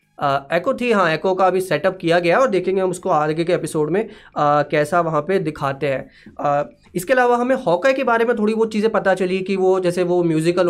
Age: 20-39